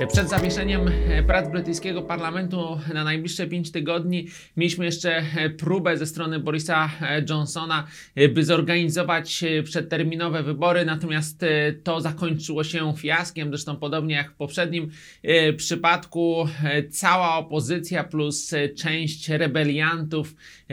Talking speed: 105 wpm